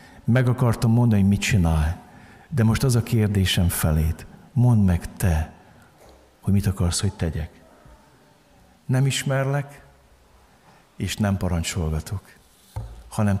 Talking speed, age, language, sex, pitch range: 115 wpm, 50-69, Hungarian, male, 100-140 Hz